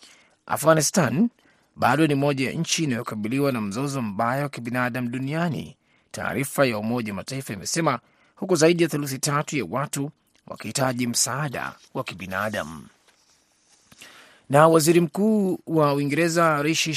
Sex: male